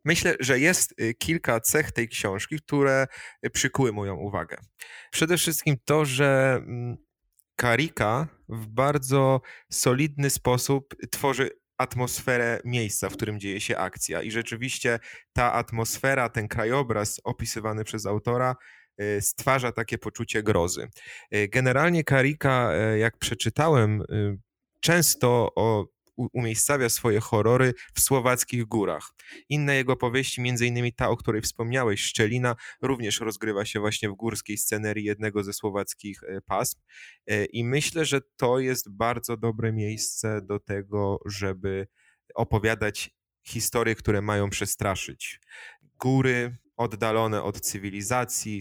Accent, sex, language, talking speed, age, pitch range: native, male, Polish, 115 wpm, 30-49, 105-130 Hz